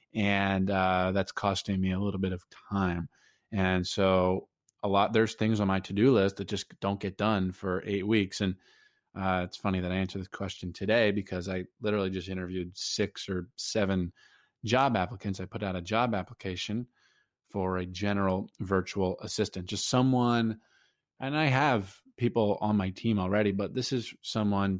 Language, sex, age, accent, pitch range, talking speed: English, male, 20-39, American, 95-110 Hz, 175 wpm